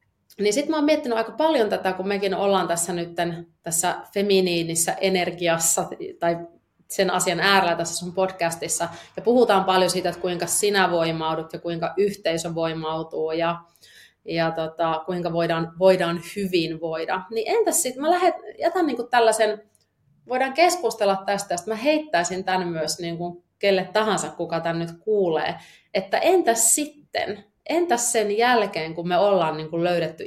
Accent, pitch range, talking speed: native, 165-200 Hz, 155 wpm